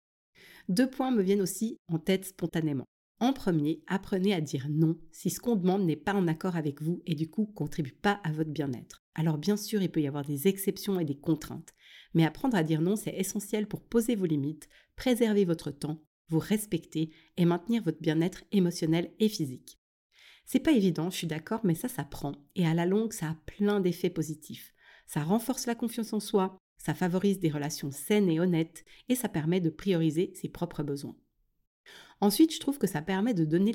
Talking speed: 205 wpm